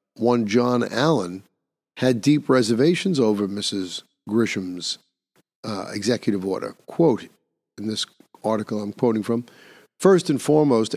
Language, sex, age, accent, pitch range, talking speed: English, male, 50-69, American, 110-135 Hz, 120 wpm